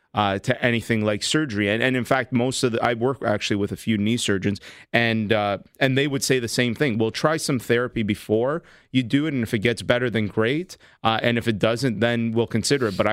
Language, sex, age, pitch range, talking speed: English, male, 30-49, 110-125 Hz, 245 wpm